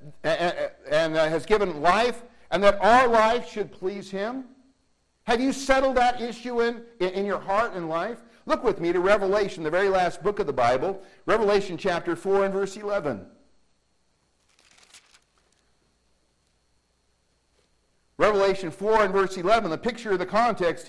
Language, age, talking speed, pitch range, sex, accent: English, 60-79, 150 wpm, 160-225 Hz, male, American